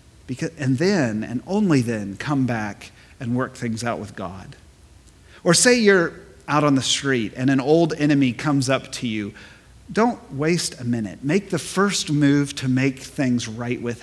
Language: English